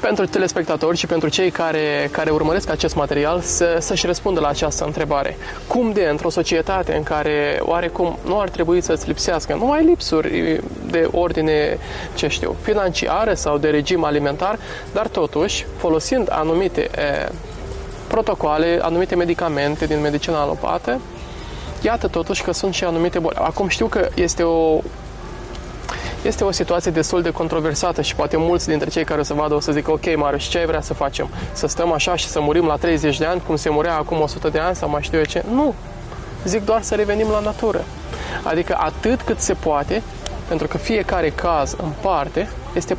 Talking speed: 180 wpm